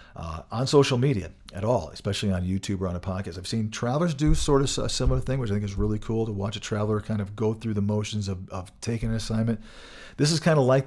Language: English